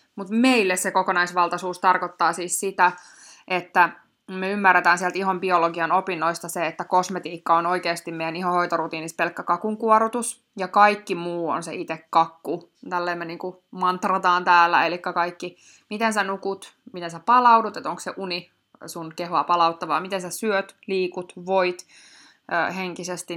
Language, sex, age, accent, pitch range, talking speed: Finnish, female, 20-39, native, 170-205 Hz, 145 wpm